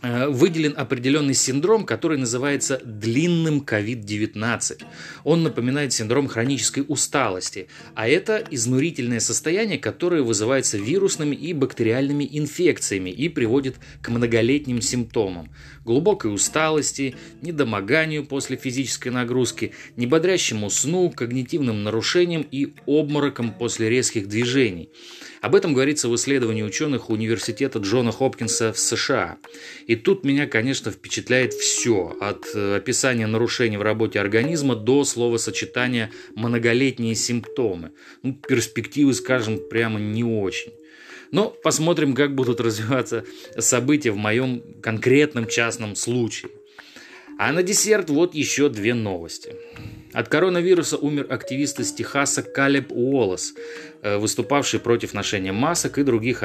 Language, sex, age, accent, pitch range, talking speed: Russian, male, 30-49, native, 115-145 Hz, 115 wpm